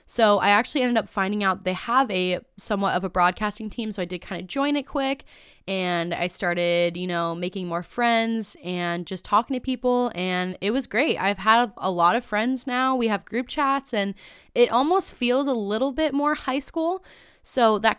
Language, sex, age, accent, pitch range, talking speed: English, female, 20-39, American, 180-240 Hz, 210 wpm